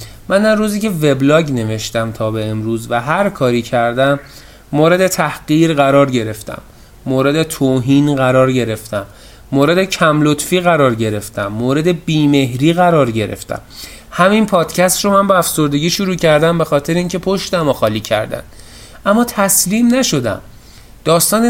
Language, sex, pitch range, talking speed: Persian, male, 125-180 Hz, 135 wpm